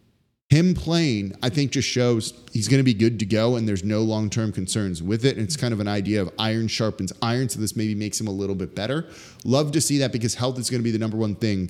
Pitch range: 105-145 Hz